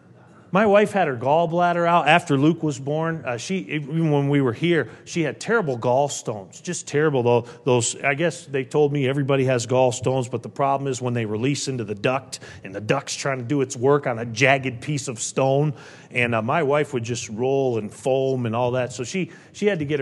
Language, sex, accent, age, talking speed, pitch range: English, male, American, 40-59, 225 wpm, 125-160 Hz